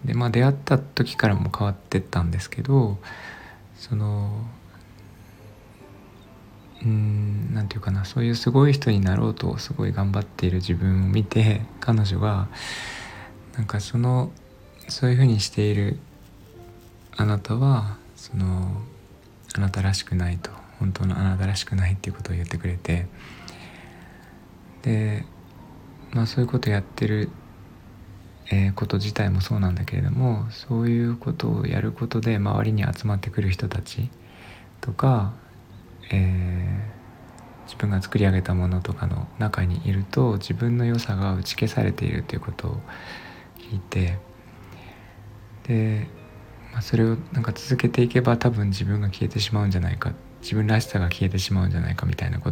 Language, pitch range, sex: Japanese, 95-115 Hz, male